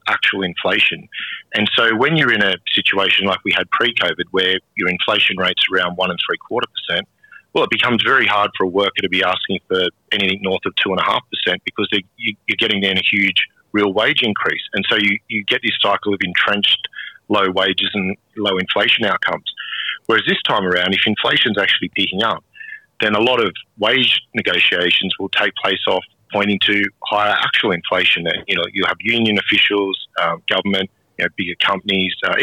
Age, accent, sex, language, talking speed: 40-59, Australian, male, English, 200 wpm